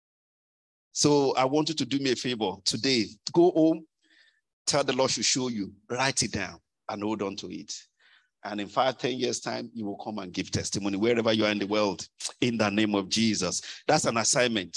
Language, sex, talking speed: English, male, 210 wpm